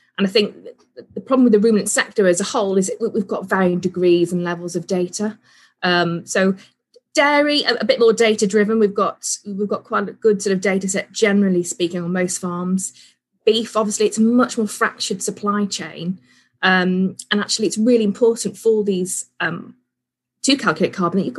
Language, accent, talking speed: English, British, 195 wpm